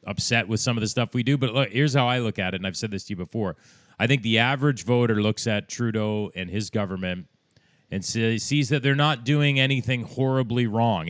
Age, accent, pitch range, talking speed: 30-49, American, 100-130 Hz, 240 wpm